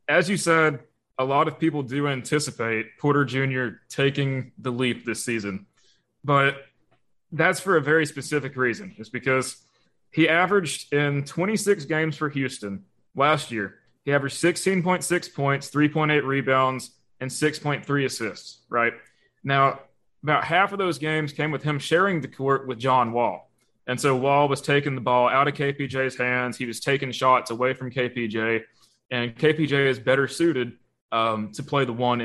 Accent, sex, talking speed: American, male, 160 wpm